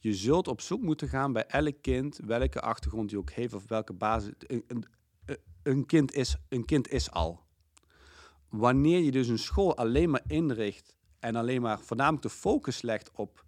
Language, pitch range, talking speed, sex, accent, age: Dutch, 100-135 Hz, 185 wpm, male, Dutch, 50-69